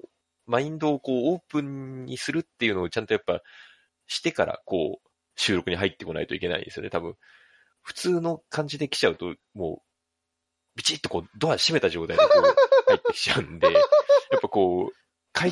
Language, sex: Japanese, male